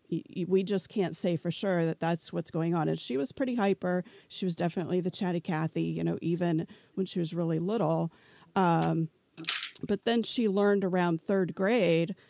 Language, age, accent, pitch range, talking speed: English, 40-59, American, 165-185 Hz, 185 wpm